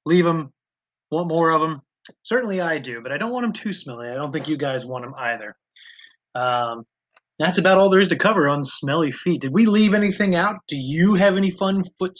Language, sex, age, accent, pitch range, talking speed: English, male, 30-49, American, 140-190 Hz, 225 wpm